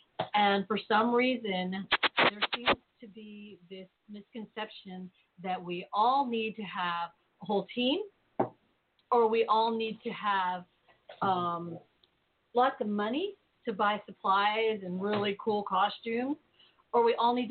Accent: American